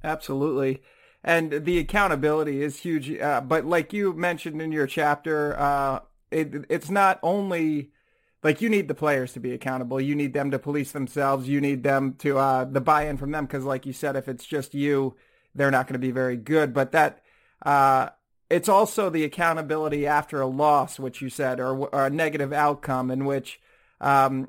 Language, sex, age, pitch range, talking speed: English, male, 30-49, 135-160 Hz, 190 wpm